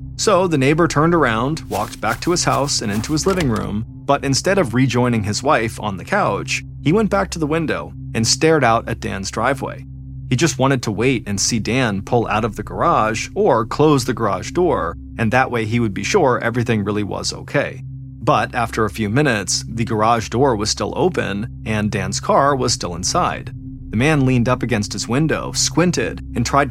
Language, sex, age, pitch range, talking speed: English, male, 30-49, 110-135 Hz, 205 wpm